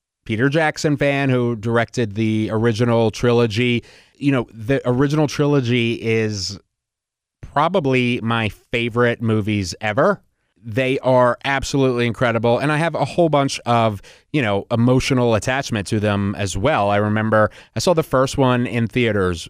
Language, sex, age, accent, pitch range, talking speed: English, male, 30-49, American, 110-130 Hz, 145 wpm